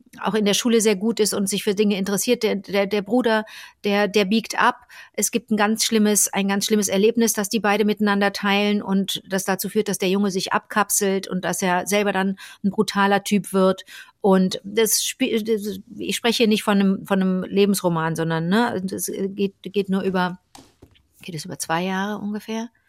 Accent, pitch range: German, 190-220 Hz